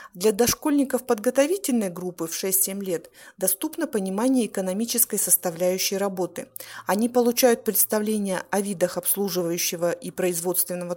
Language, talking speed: Russian, 110 wpm